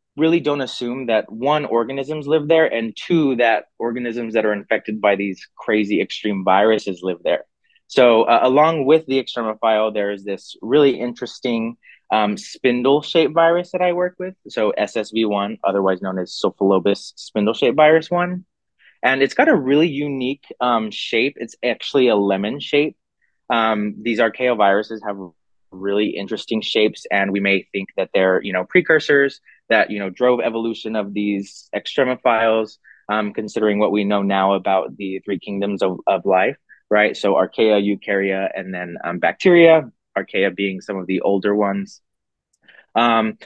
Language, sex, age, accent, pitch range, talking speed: English, male, 30-49, American, 100-145 Hz, 155 wpm